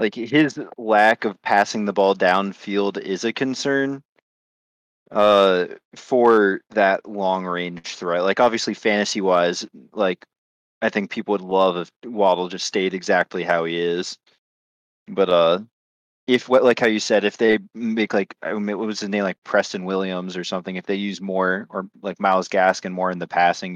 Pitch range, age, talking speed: 90-115 Hz, 20-39, 165 wpm